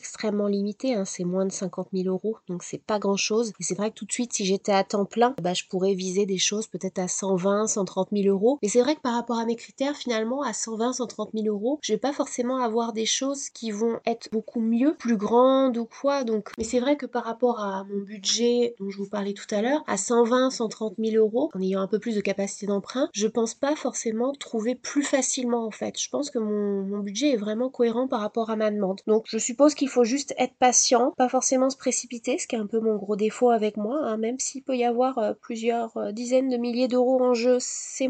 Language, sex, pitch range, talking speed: French, female, 205-250 Hz, 250 wpm